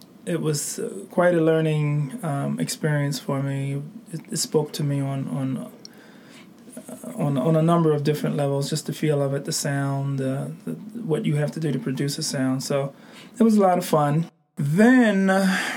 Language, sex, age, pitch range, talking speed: English, male, 20-39, 145-215 Hz, 185 wpm